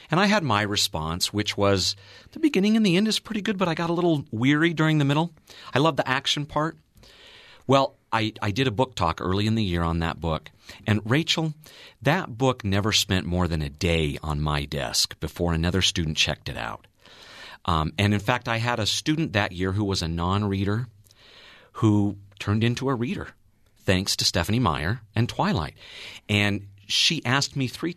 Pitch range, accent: 100-150 Hz, American